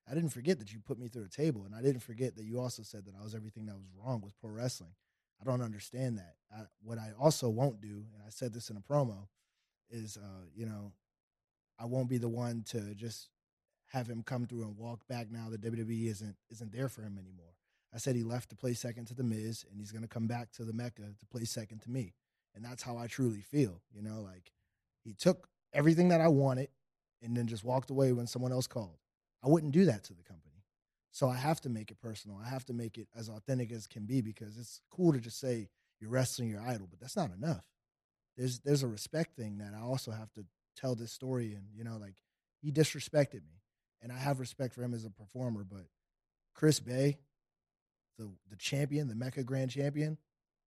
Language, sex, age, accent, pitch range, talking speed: English, male, 20-39, American, 105-130 Hz, 235 wpm